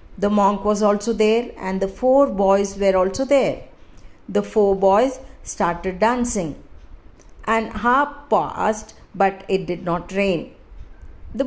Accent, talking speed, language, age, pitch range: Indian, 135 wpm, English, 50-69, 180-230 Hz